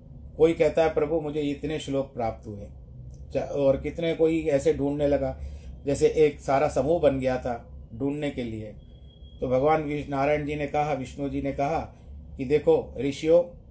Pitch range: 115-145 Hz